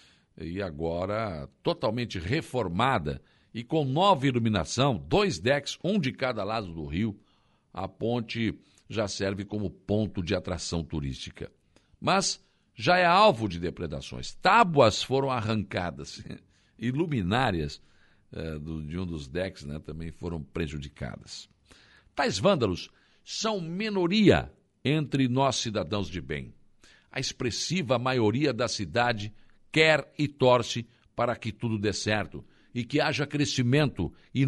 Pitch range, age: 100-145 Hz, 60-79